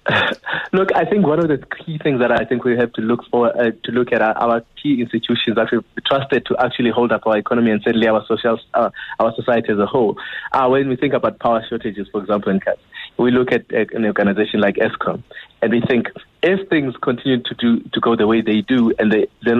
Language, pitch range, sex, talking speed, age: English, 110-130 Hz, male, 245 wpm, 30-49